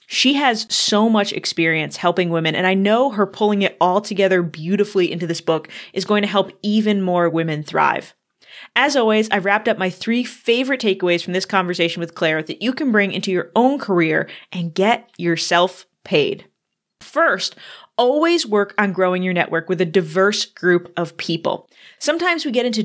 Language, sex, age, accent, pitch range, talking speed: English, female, 20-39, American, 185-235 Hz, 185 wpm